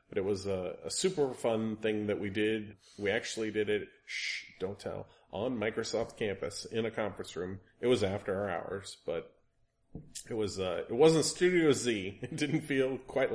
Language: English